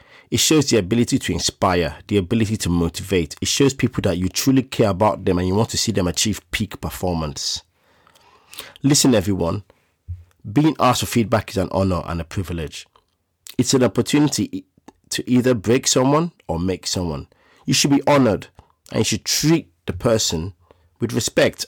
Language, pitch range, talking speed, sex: English, 90-120 Hz, 170 wpm, male